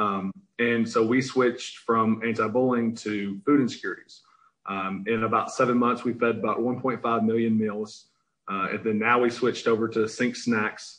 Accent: American